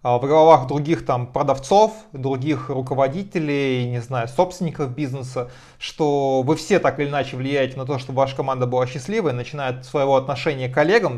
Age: 20-39